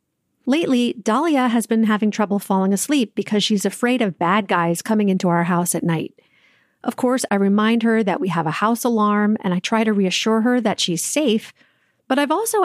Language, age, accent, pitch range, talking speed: English, 40-59, American, 205-255 Hz, 205 wpm